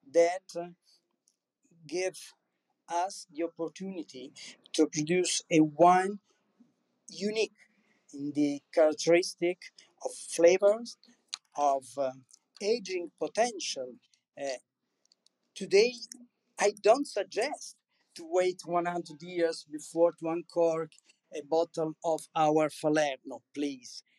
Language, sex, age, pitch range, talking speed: English, male, 50-69, 155-200 Hz, 95 wpm